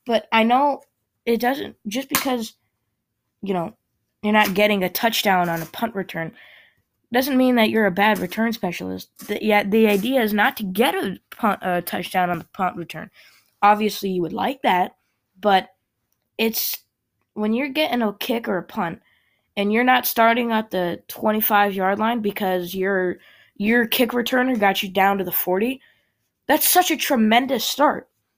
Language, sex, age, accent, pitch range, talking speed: English, female, 20-39, American, 185-235 Hz, 175 wpm